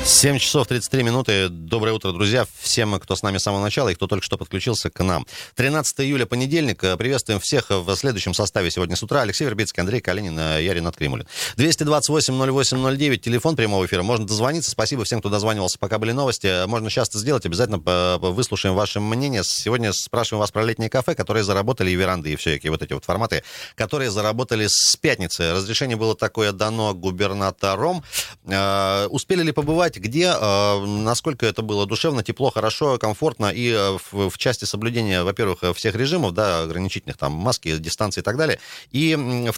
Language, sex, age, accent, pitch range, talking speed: Russian, male, 30-49, native, 95-130 Hz, 170 wpm